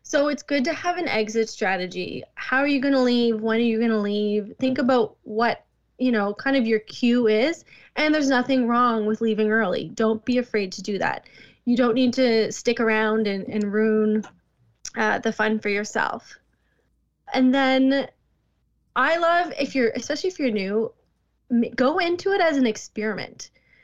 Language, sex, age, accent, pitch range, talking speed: English, female, 20-39, American, 220-275 Hz, 185 wpm